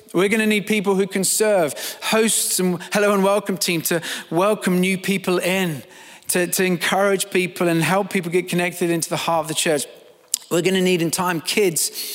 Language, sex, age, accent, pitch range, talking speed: English, male, 30-49, British, 160-190 Hz, 200 wpm